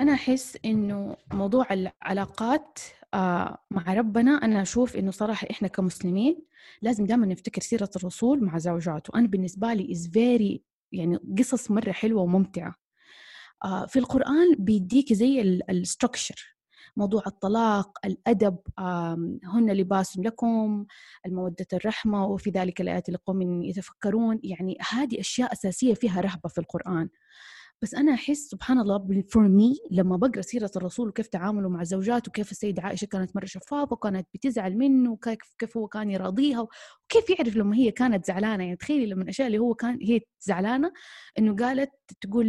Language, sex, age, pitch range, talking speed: English, female, 20-39, 190-240 Hz, 145 wpm